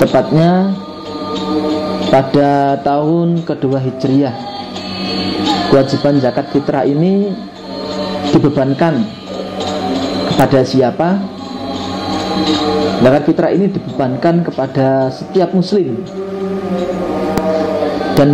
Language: Indonesian